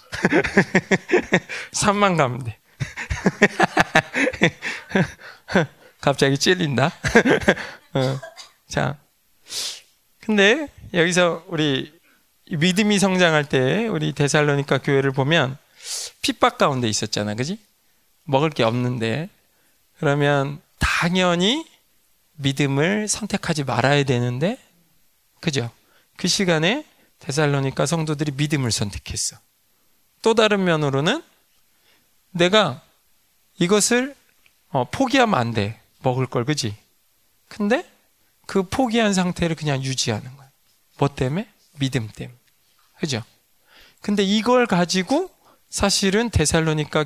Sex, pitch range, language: male, 130-200 Hz, Korean